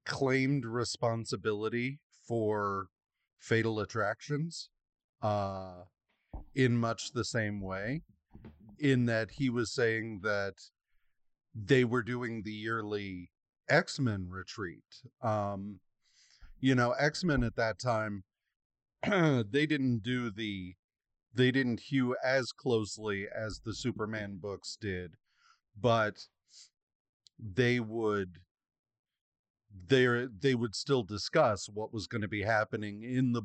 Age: 40-59